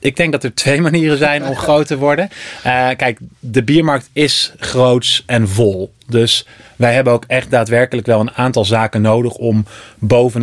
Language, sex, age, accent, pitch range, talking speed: Dutch, male, 30-49, Dutch, 110-135 Hz, 185 wpm